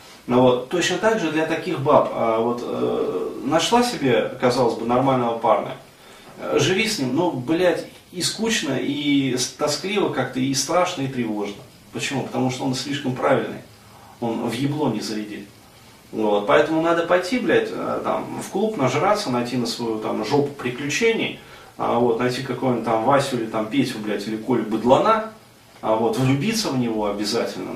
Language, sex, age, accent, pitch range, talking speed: Russian, male, 30-49, native, 115-155 Hz, 155 wpm